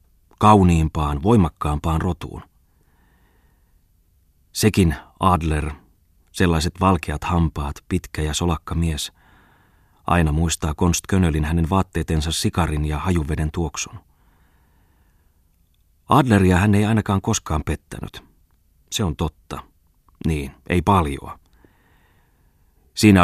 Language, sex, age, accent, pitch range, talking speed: Finnish, male, 30-49, native, 80-95 Hz, 90 wpm